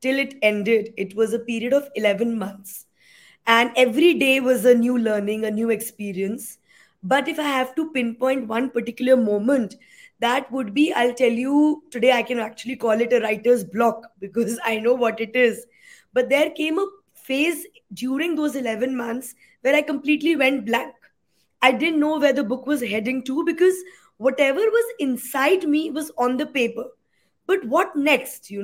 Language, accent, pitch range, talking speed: English, Indian, 240-305 Hz, 180 wpm